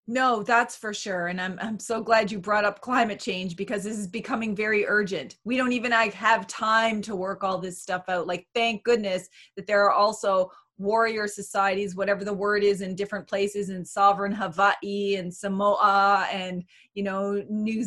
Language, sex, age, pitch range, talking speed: English, female, 30-49, 200-245 Hz, 190 wpm